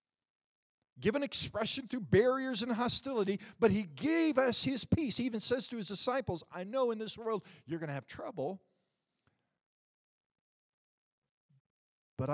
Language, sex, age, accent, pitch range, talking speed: English, male, 50-69, American, 110-170 Hz, 140 wpm